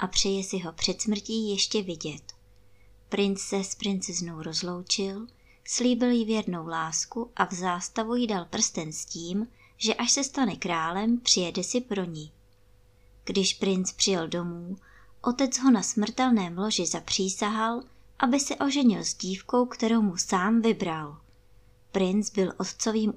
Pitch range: 175-225 Hz